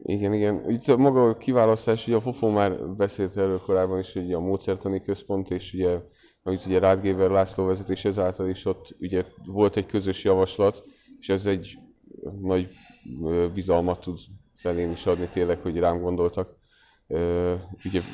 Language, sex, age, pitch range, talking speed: Hungarian, male, 30-49, 90-105 Hz, 150 wpm